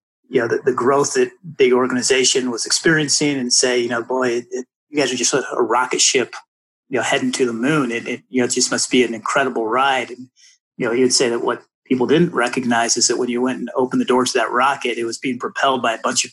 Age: 30-49